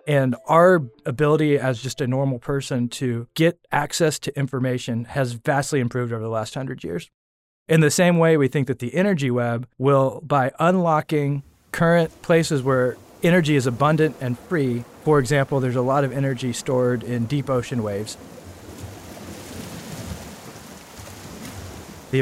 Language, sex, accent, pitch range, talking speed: English, male, American, 125-150 Hz, 150 wpm